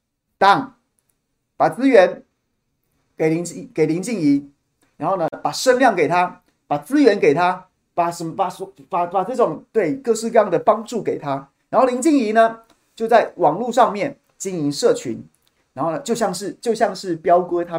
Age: 30-49